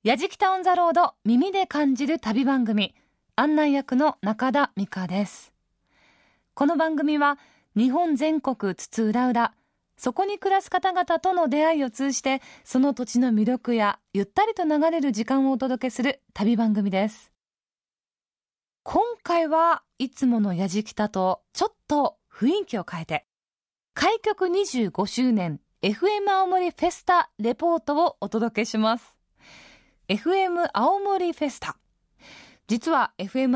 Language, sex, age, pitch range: Japanese, female, 20-39, 215-325 Hz